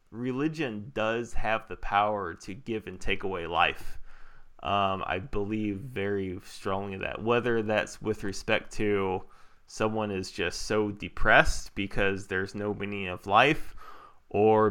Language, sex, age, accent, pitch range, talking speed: English, male, 20-39, American, 95-110 Hz, 140 wpm